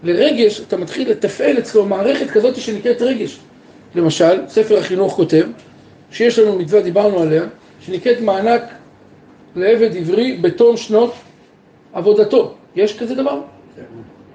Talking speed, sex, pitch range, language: 120 wpm, male, 195-240 Hz, Hebrew